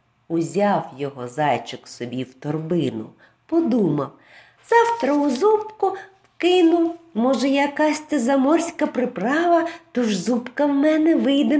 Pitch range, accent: 200-310 Hz, native